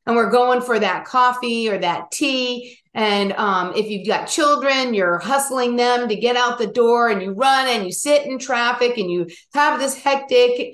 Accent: American